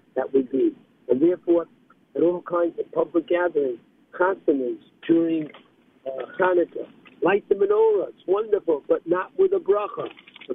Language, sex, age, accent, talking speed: English, male, 50-69, American, 150 wpm